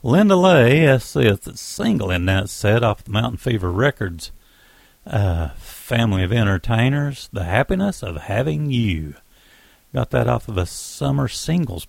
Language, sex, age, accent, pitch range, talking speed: English, male, 50-69, American, 100-155 Hz, 150 wpm